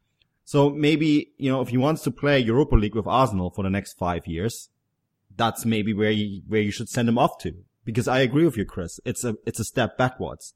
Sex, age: male, 30-49